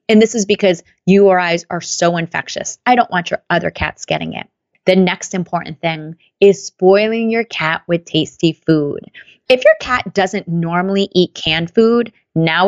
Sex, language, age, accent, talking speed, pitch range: female, English, 30-49, American, 170 wpm, 170-230 Hz